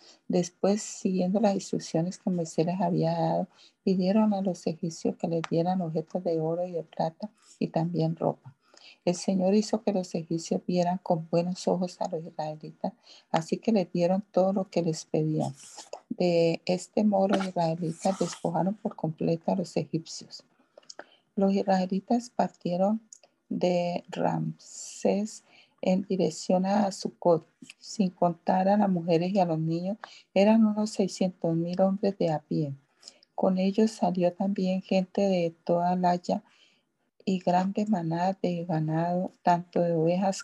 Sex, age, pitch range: female, 40-59, 170-200 Hz